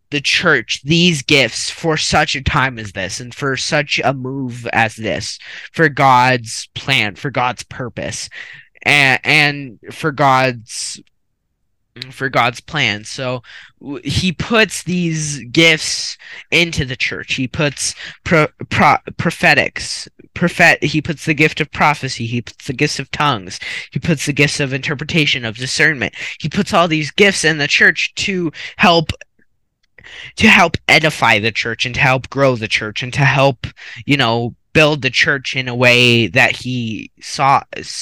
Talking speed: 160 wpm